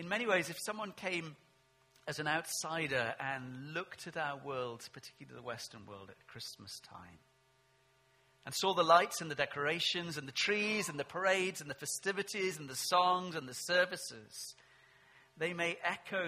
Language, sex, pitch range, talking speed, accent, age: English, male, 130-170 Hz, 170 wpm, British, 40-59